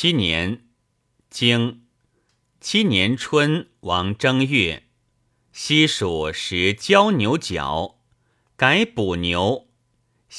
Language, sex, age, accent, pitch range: Chinese, male, 50-69, native, 110-135 Hz